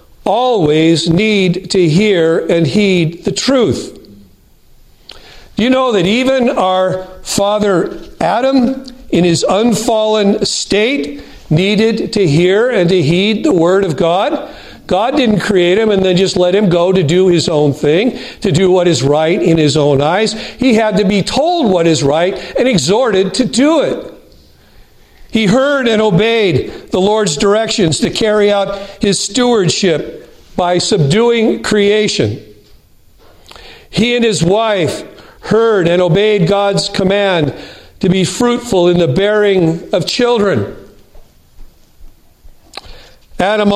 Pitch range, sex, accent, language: 175-220 Hz, male, American, English